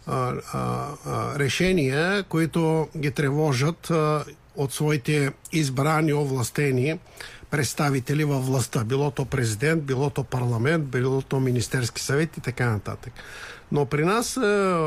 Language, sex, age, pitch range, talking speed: Bulgarian, male, 50-69, 130-160 Hz, 110 wpm